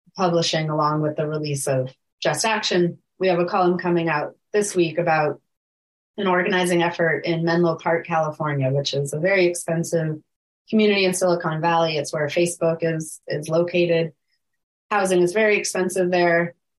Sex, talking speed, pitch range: female, 155 wpm, 160-185 Hz